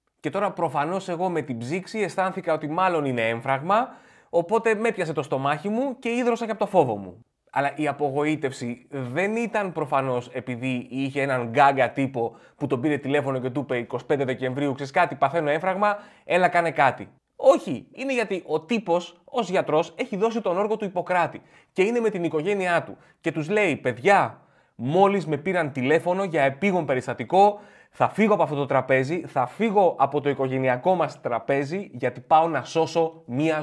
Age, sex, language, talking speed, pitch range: 20-39, male, Greek, 180 wpm, 135-210 Hz